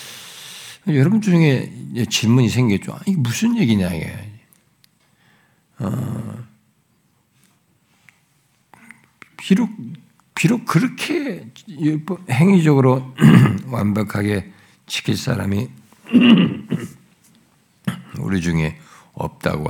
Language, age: Korean, 60-79